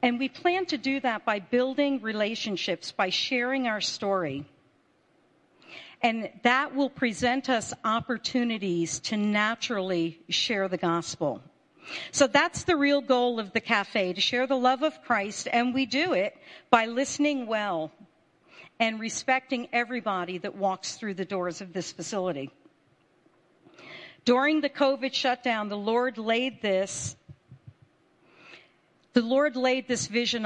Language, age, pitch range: English, 50-69, 200-260 Hz